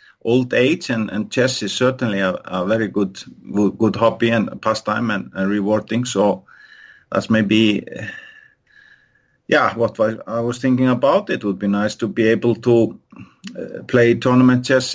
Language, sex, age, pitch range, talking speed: English, male, 50-69, 105-125 Hz, 155 wpm